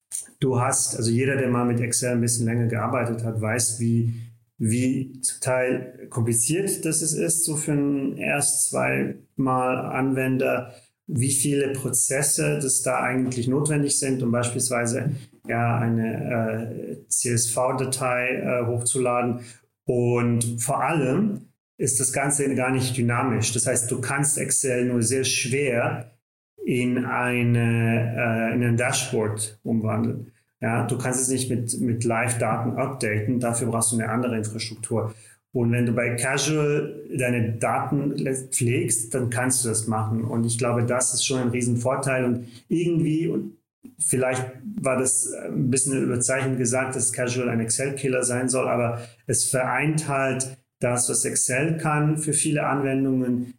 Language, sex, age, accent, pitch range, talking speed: German, male, 40-59, German, 115-130 Hz, 145 wpm